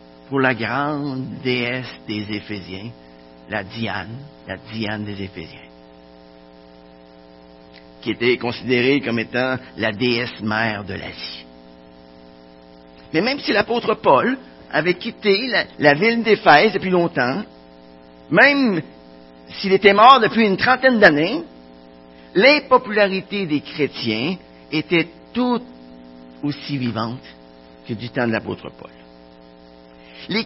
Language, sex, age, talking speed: French, male, 50-69, 110 wpm